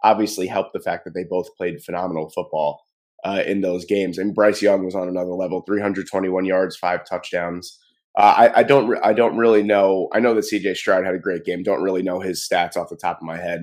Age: 20-39